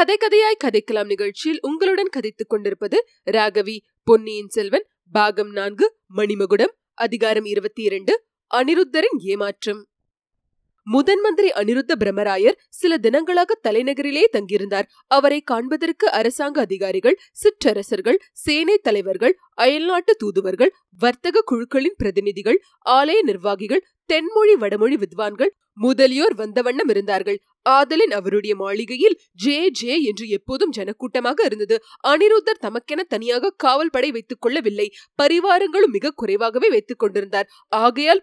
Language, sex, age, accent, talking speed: Tamil, female, 20-39, native, 75 wpm